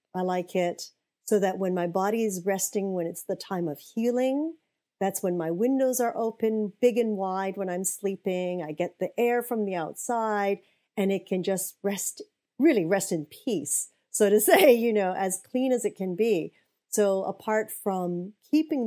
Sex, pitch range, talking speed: female, 185-240 Hz, 190 wpm